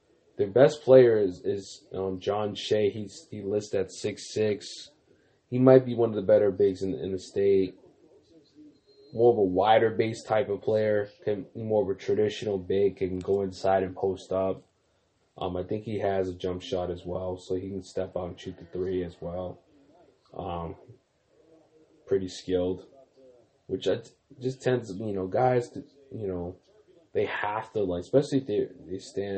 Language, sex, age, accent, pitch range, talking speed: English, male, 20-39, American, 95-120 Hz, 190 wpm